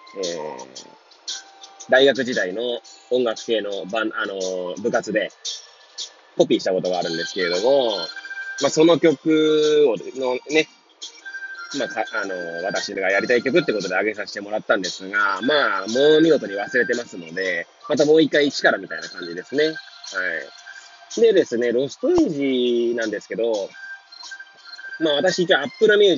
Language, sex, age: Japanese, male, 20-39